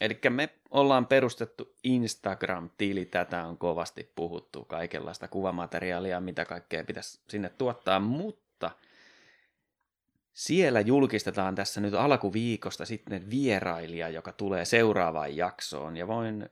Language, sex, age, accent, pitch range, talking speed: Finnish, male, 30-49, native, 100-125 Hz, 110 wpm